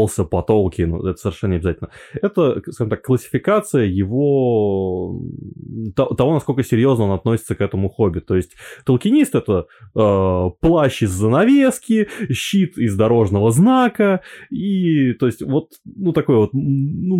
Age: 20-39